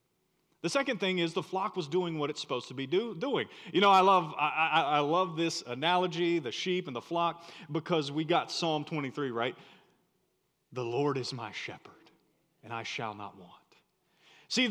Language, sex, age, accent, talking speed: English, male, 40-59, American, 190 wpm